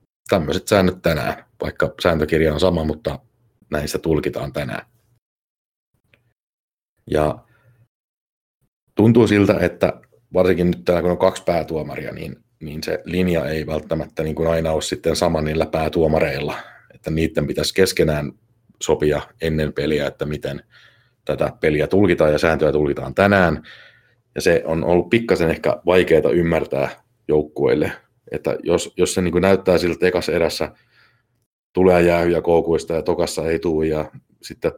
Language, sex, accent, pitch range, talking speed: Finnish, male, native, 75-95 Hz, 135 wpm